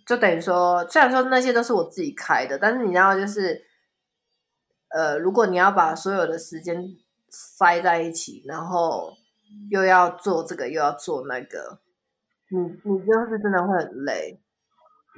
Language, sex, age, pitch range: Chinese, female, 20-39, 165-220 Hz